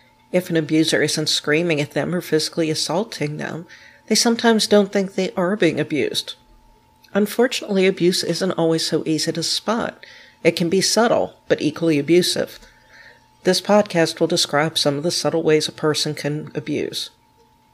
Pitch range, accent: 155-185 Hz, American